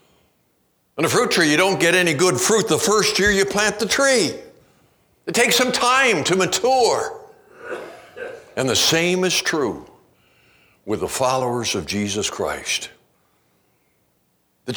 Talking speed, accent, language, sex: 140 wpm, American, English, male